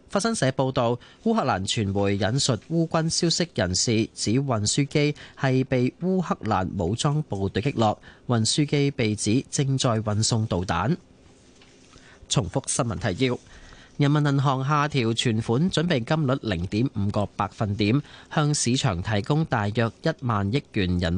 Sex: male